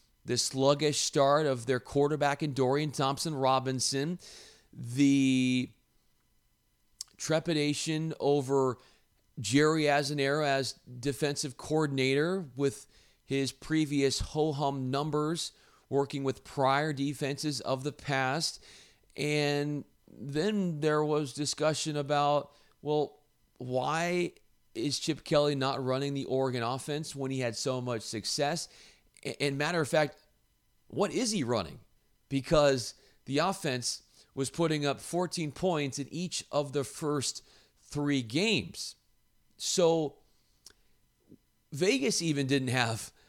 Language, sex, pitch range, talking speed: English, male, 130-150 Hz, 110 wpm